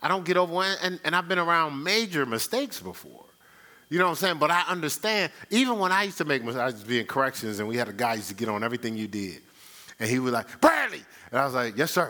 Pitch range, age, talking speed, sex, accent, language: 110-185 Hz, 40-59, 285 wpm, male, American, English